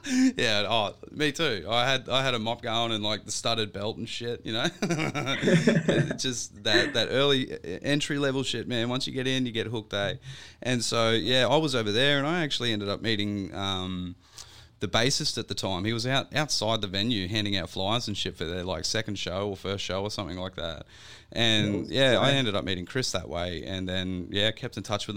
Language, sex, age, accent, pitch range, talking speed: English, male, 20-39, Australian, 95-115 Hz, 225 wpm